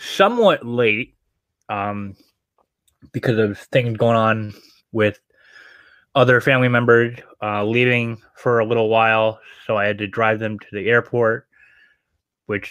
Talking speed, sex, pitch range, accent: 130 wpm, male, 110-140 Hz, American